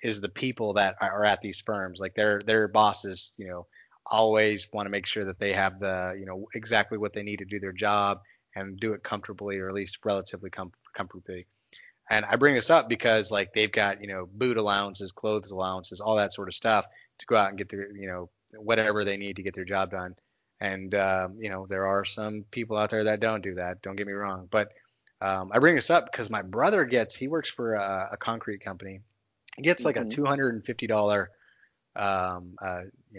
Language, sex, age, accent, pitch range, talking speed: English, male, 20-39, American, 95-110 Hz, 215 wpm